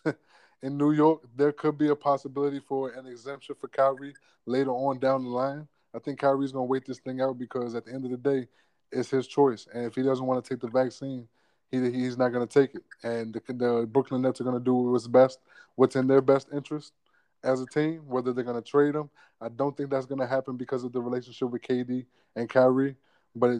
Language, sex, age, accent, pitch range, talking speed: English, male, 20-39, American, 125-140 Hz, 235 wpm